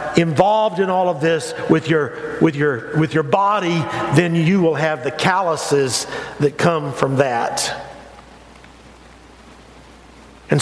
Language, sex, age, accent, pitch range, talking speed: English, male, 50-69, American, 135-175 Hz, 130 wpm